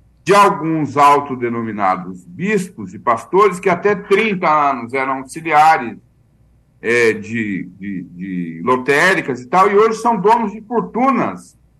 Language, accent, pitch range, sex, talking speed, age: Portuguese, Brazilian, 135-205 Hz, male, 115 wpm, 60-79